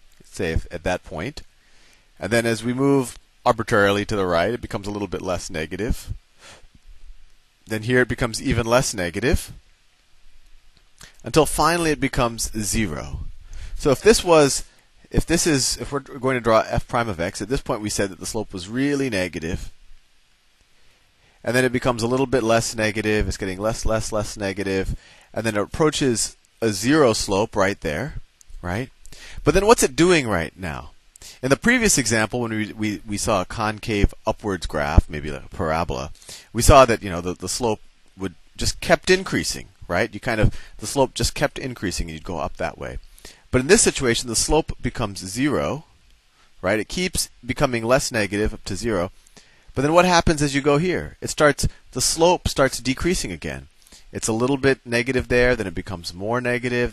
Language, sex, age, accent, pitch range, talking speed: English, male, 30-49, American, 95-130 Hz, 190 wpm